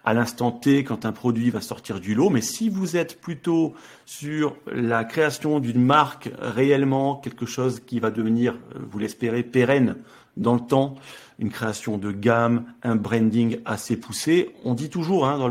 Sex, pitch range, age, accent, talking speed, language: male, 115-145 Hz, 40-59, French, 175 wpm, French